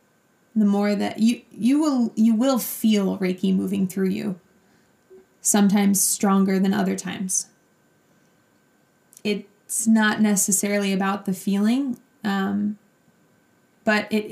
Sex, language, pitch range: female, English, 190-215 Hz